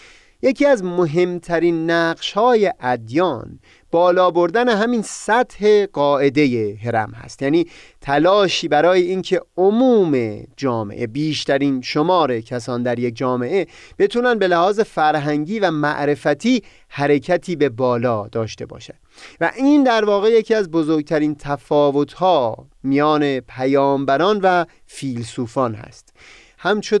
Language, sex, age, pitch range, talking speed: Persian, male, 30-49, 125-185 Hz, 110 wpm